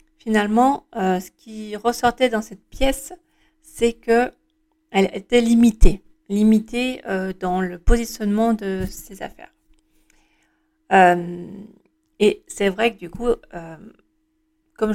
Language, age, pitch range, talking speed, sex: French, 40-59, 195-260 Hz, 115 wpm, female